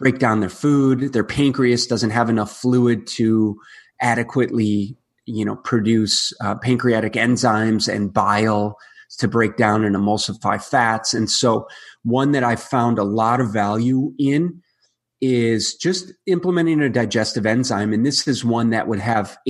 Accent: American